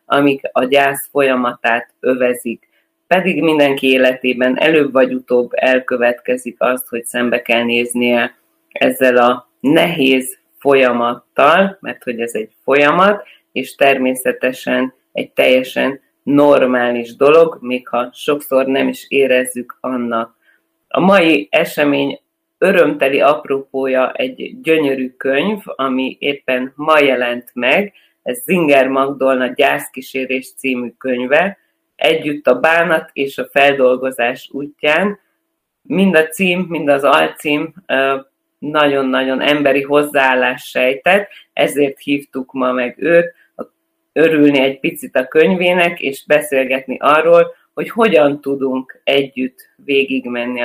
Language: Hungarian